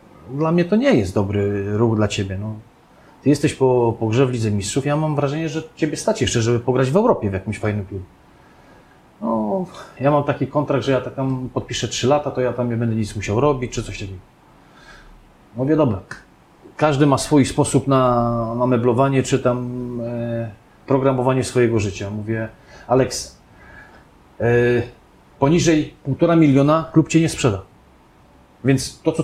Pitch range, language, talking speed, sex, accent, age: 110-140 Hz, Polish, 170 wpm, male, native, 40-59